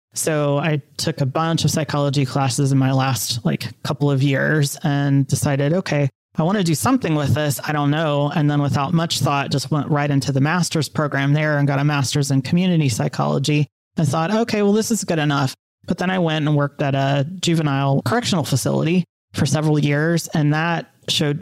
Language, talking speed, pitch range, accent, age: English, 205 wpm, 140-155 Hz, American, 30-49